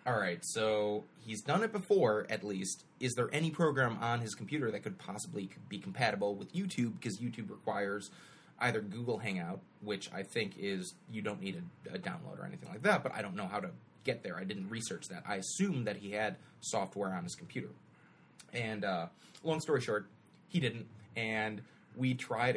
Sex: male